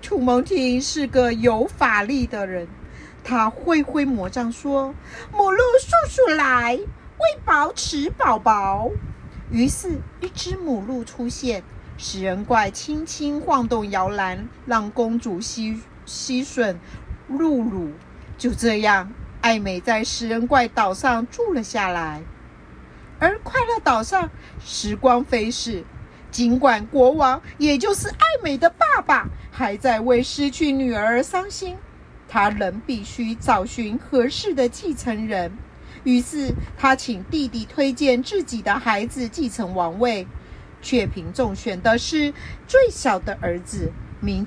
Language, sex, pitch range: Chinese, female, 225-285 Hz